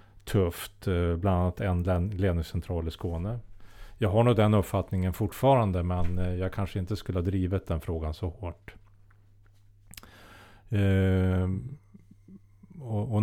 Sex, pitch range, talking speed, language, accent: male, 90-100 Hz, 115 wpm, Swedish, Norwegian